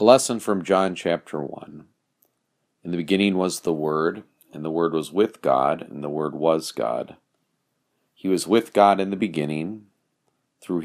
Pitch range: 80-105 Hz